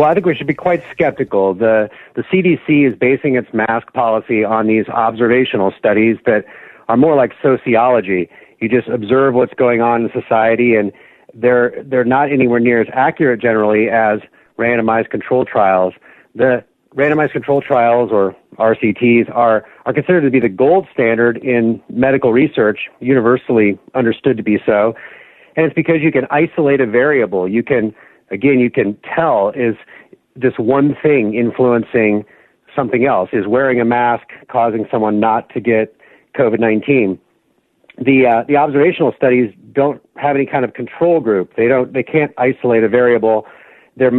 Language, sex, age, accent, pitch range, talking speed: English, male, 40-59, American, 110-130 Hz, 160 wpm